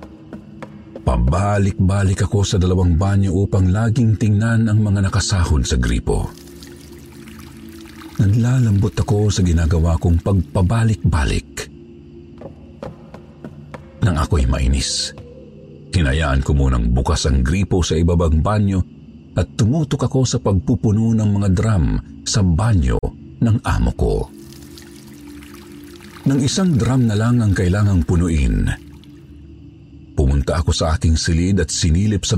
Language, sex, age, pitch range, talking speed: Filipino, male, 50-69, 75-100 Hz, 110 wpm